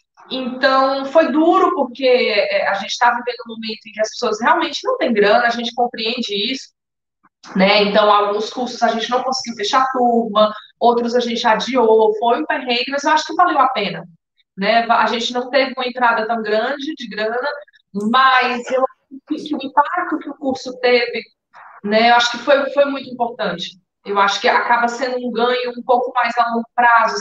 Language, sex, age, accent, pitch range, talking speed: Portuguese, female, 20-39, Brazilian, 220-250 Hz, 200 wpm